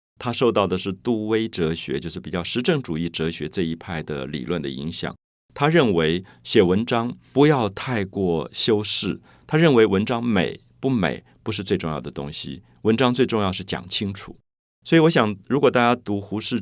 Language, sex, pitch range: Chinese, male, 90-125 Hz